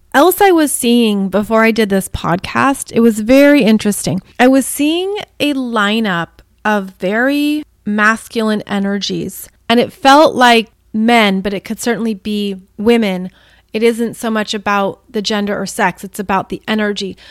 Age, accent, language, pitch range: 30-49, American, English, 215-260 Hz